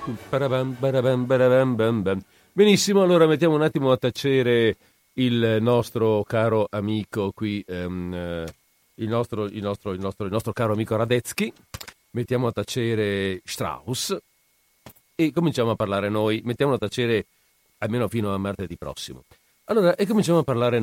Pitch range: 100-130 Hz